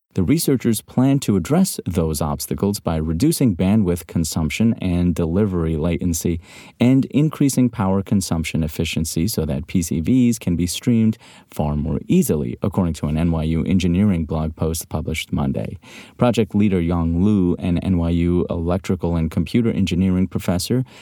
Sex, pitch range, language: male, 85-110 Hz, English